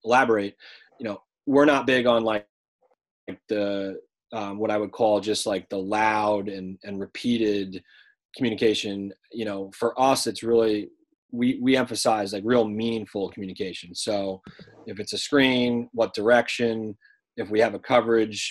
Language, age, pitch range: English, 30-49, 105-125 Hz